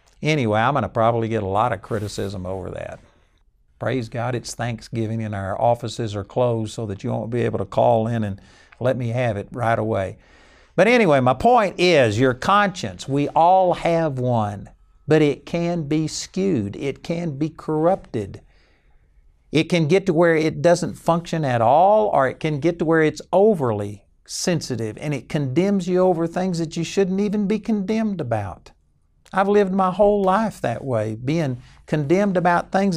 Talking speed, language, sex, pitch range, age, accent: 180 wpm, English, male, 110-165 Hz, 60-79, American